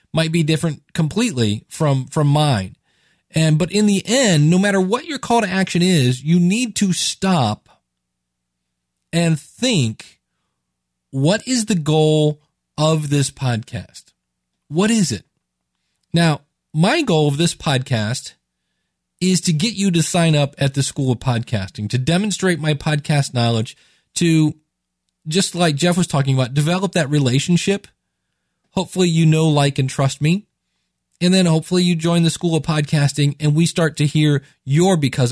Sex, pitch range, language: male, 125-175 Hz, English